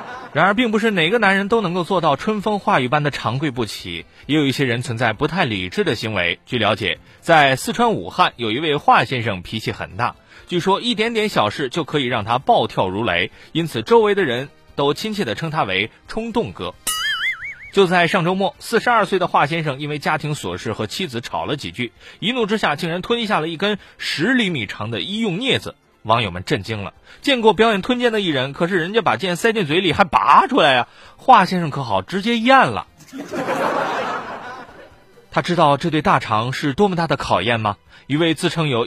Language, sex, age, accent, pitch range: Chinese, male, 30-49, native, 125-205 Hz